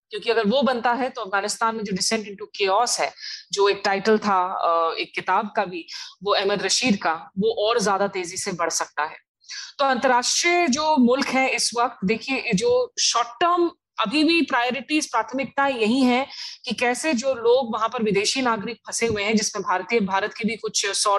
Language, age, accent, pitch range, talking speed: Hindi, 20-39, native, 190-235 Hz, 195 wpm